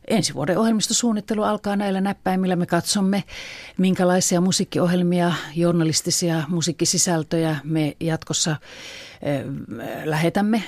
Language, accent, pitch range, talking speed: Finnish, native, 155-200 Hz, 90 wpm